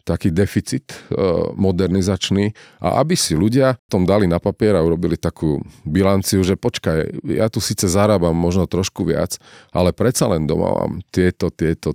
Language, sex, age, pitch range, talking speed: Slovak, male, 40-59, 85-105 Hz, 160 wpm